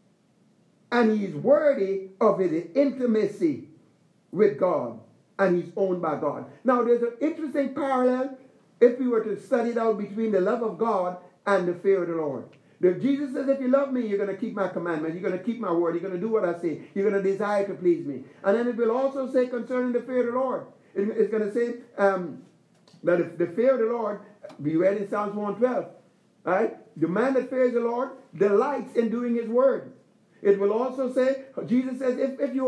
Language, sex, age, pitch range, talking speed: English, male, 60-79, 200-255 Hz, 220 wpm